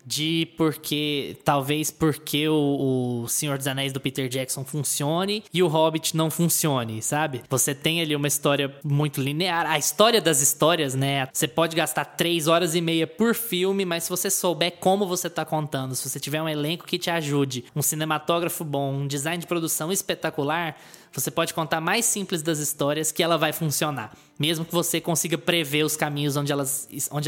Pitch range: 145-185 Hz